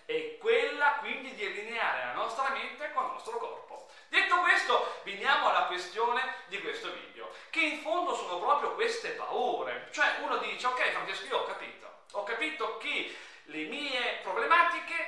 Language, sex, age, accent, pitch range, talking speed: Italian, male, 40-59, native, 215-335 Hz, 165 wpm